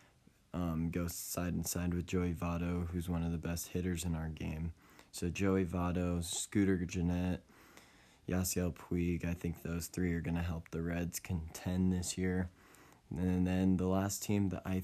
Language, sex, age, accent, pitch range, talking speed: English, male, 20-39, American, 85-95 Hz, 180 wpm